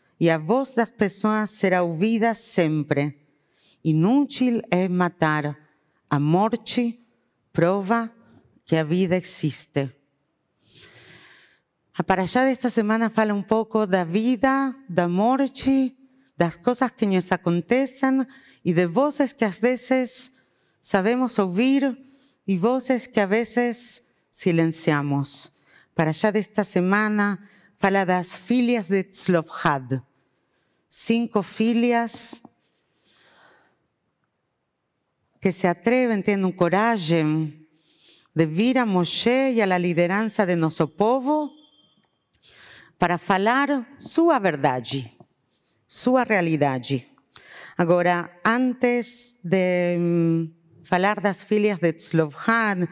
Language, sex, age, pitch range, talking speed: Portuguese, female, 50-69, 170-235 Hz, 110 wpm